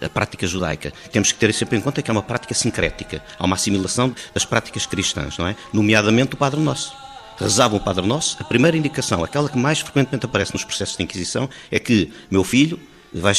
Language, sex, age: Portuguese, male, 50-69